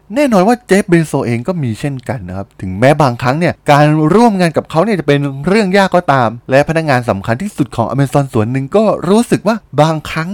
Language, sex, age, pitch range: Thai, male, 20-39, 105-170 Hz